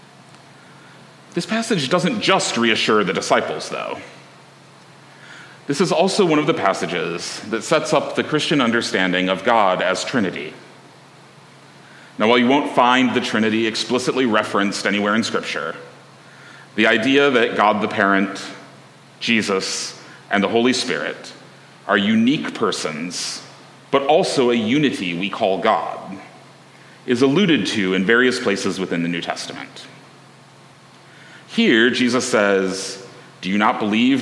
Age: 40-59